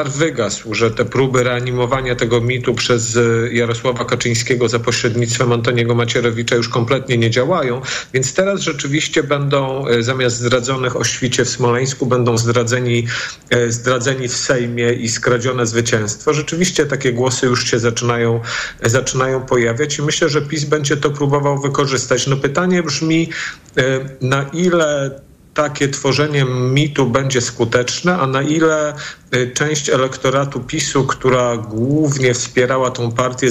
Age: 40-59